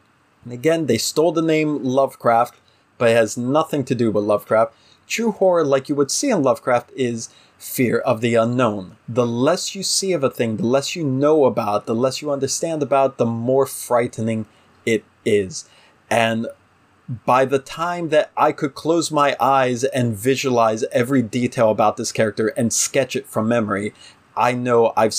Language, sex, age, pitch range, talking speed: English, male, 30-49, 110-140 Hz, 175 wpm